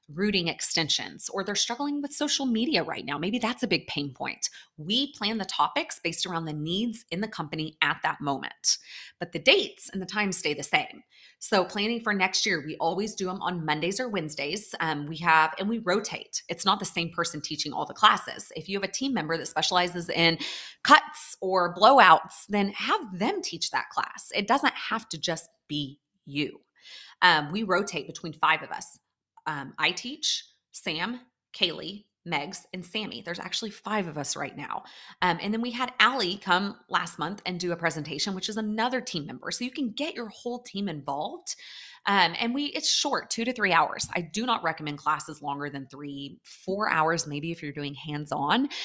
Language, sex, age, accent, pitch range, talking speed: English, female, 30-49, American, 160-225 Hz, 200 wpm